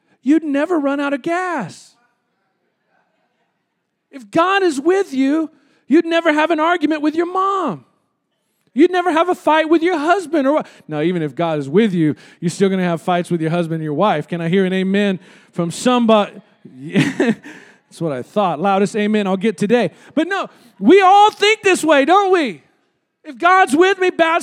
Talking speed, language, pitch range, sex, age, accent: 190 wpm, English, 230-340 Hz, male, 40-59, American